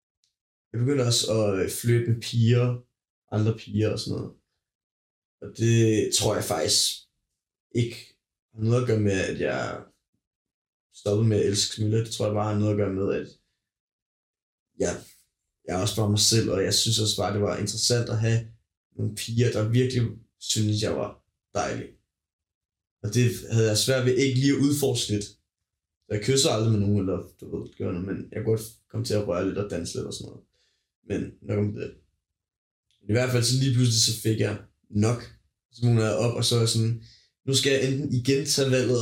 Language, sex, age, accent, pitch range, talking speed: Danish, male, 20-39, native, 105-125 Hz, 200 wpm